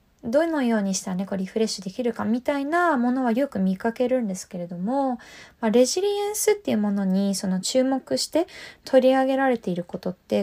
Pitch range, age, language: 195-295 Hz, 20-39, Japanese